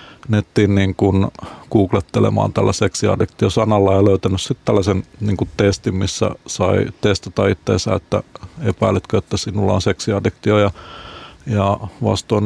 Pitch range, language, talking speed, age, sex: 100-115 Hz, Finnish, 115 wpm, 50-69, male